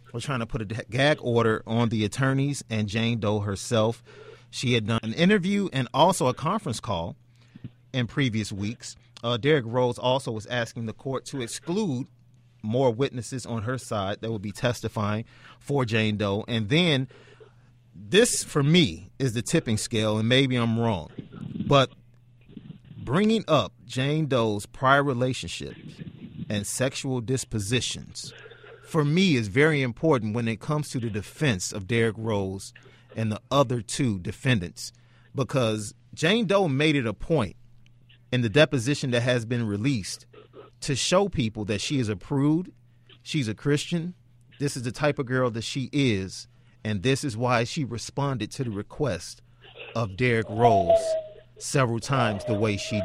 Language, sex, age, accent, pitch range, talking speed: English, male, 30-49, American, 115-140 Hz, 160 wpm